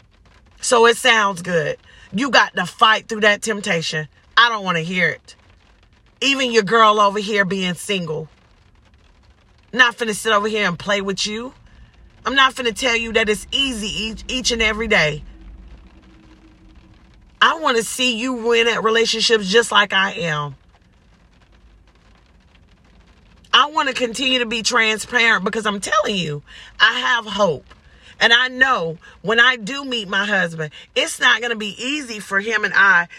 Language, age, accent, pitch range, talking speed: English, 40-59, American, 155-235 Hz, 165 wpm